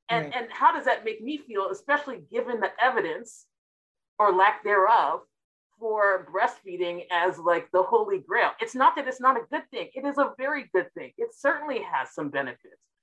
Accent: American